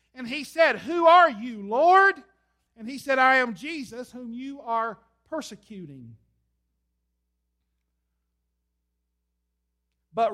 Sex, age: male, 50-69